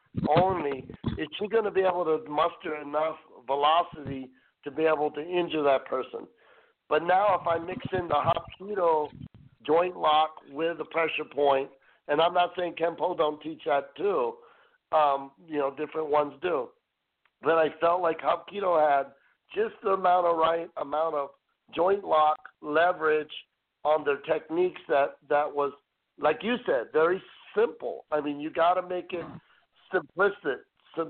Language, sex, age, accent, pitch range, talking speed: English, male, 50-69, American, 150-180 Hz, 160 wpm